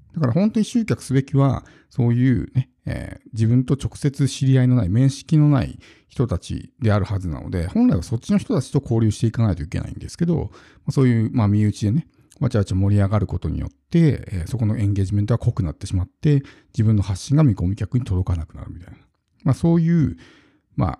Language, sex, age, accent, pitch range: Japanese, male, 50-69, native, 100-135 Hz